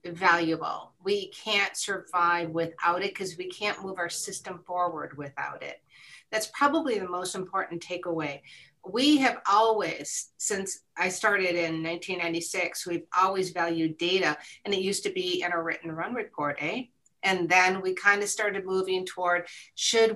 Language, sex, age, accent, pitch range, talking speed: English, female, 40-59, American, 170-220 Hz, 160 wpm